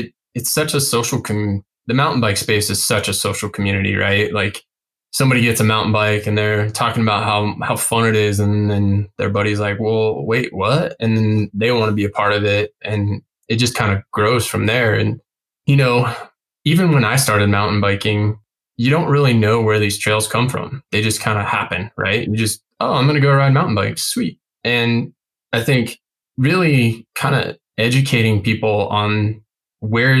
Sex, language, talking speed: male, English, 200 wpm